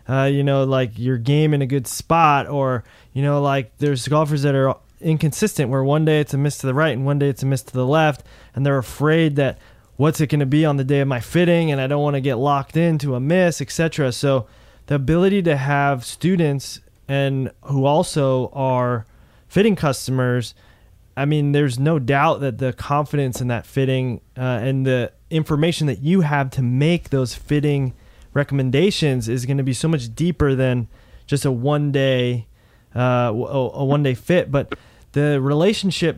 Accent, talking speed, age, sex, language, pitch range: American, 195 wpm, 20-39, male, English, 130-155 Hz